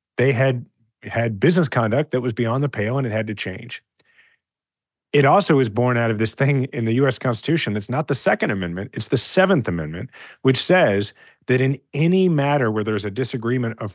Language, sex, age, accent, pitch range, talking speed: English, male, 40-59, American, 110-145 Hz, 200 wpm